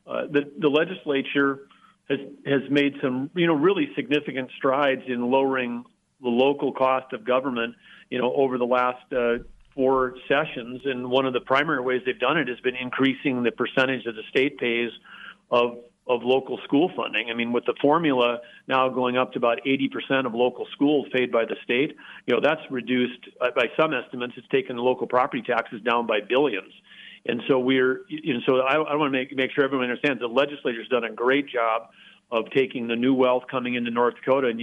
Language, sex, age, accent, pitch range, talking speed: English, male, 40-59, American, 120-135 Hz, 205 wpm